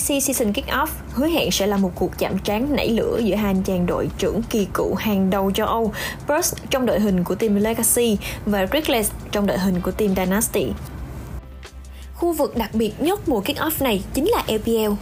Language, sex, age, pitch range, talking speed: Vietnamese, female, 20-39, 200-275 Hz, 205 wpm